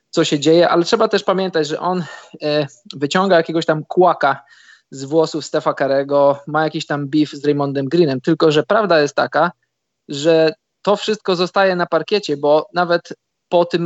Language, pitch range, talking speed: Polish, 150-165 Hz, 175 wpm